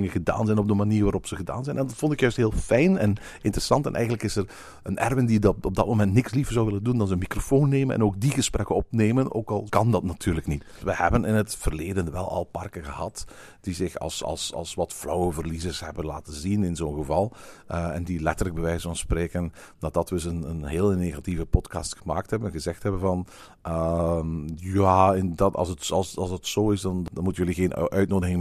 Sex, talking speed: male, 235 wpm